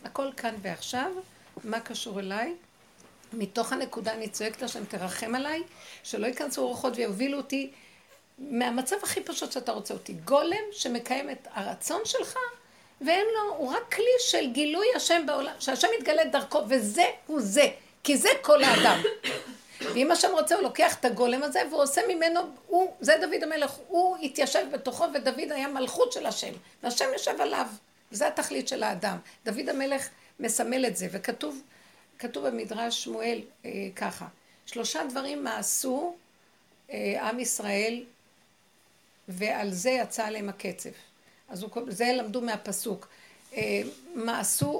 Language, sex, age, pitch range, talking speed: Hebrew, female, 50-69, 225-305 Hz, 140 wpm